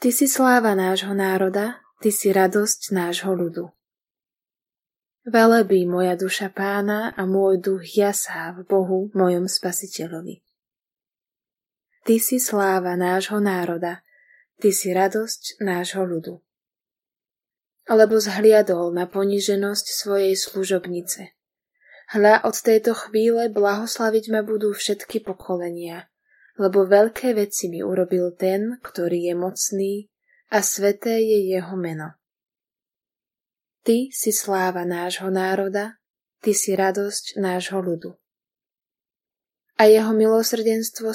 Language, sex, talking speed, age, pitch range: Slovak, female, 110 wpm, 20-39, 185-220 Hz